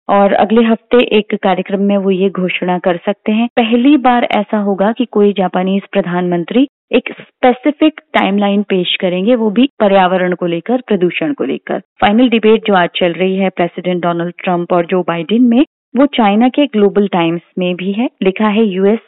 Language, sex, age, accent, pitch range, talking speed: Hindi, female, 30-49, native, 185-240 Hz, 180 wpm